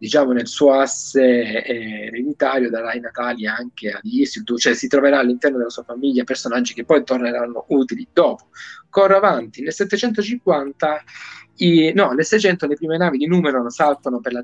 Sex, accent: male, native